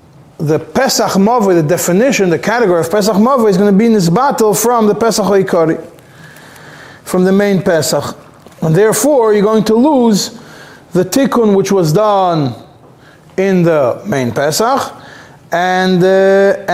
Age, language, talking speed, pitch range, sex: 30-49, English, 150 wpm, 185-235 Hz, male